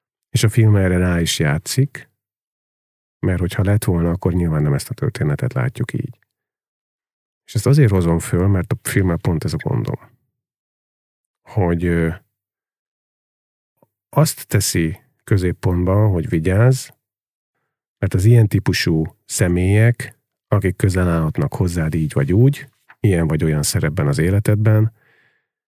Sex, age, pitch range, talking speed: male, 40-59, 85-115 Hz, 130 wpm